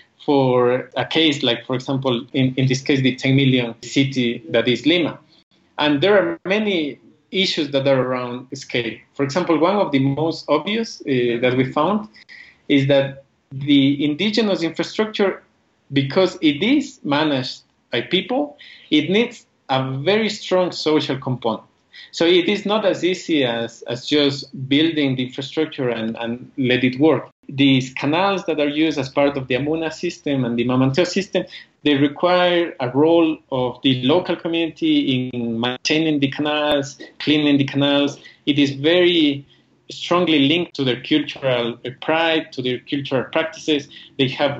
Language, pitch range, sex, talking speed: English, 130-165 Hz, male, 155 wpm